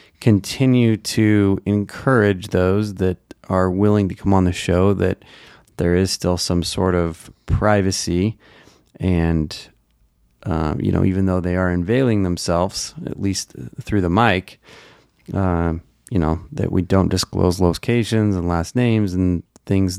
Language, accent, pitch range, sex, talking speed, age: English, American, 90-105 Hz, male, 145 wpm, 30-49